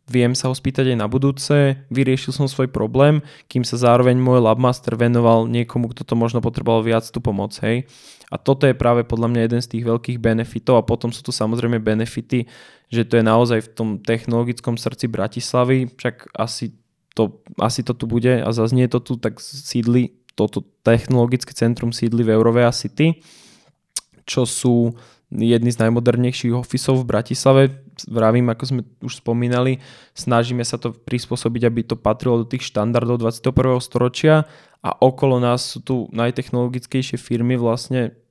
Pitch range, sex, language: 115-130 Hz, male, Slovak